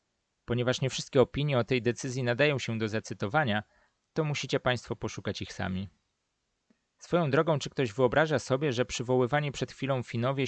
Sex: male